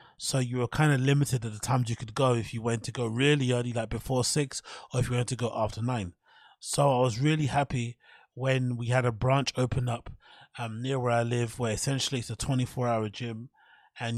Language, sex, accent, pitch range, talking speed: English, male, British, 115-130 Hz, 235 wpm